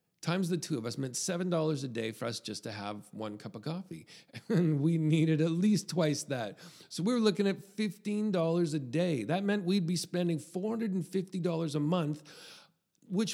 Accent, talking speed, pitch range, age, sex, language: American, 190 wpm, 150-190 Hz, 40-59, male, English